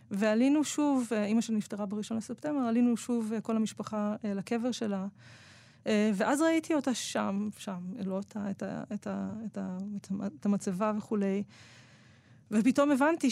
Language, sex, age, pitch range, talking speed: Hebrew, female, 20-39, 205-240 Hz, 150 wpm